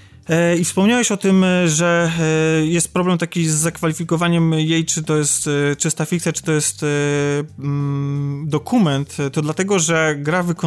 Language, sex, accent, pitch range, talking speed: Polish, male, native, 145-165 Hz, 135 wpm